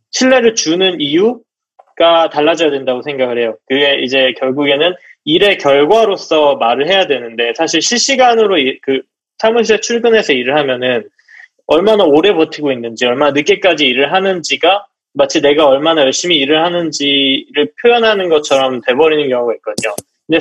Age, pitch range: 20-39, 140-210 Hz